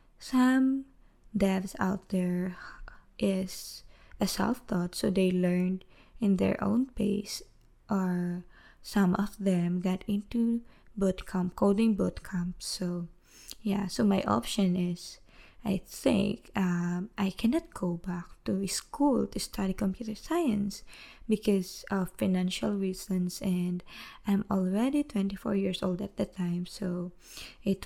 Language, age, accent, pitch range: English, 20-39, Filipino, 185-210 Hz